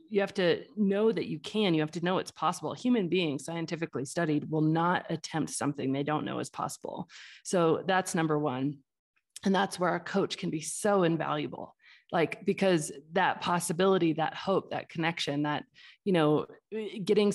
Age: 30-49